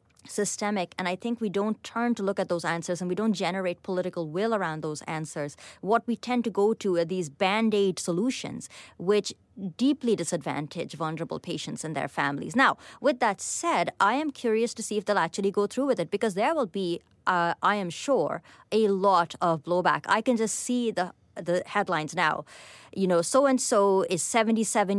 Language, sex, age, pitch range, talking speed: English, female, 30-49, 180-220 Hz, 190 wpm